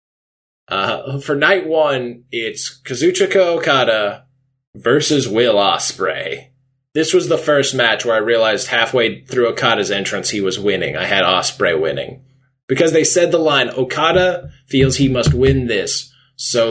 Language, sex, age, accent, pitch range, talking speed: English, male, 20-39, American, 115-140 Hz, 145 wpm